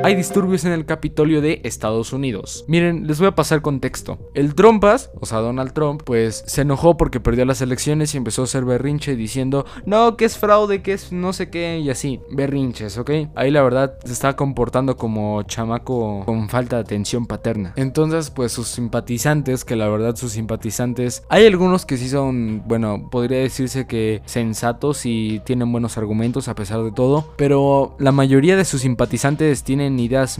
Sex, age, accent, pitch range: male, 20-39, Mexican, 120-145 Hz